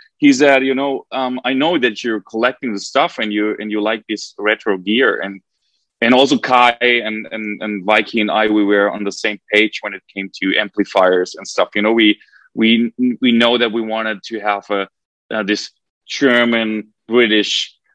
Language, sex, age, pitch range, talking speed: English, male, 30-49, 105-125 Hz, 195 wpm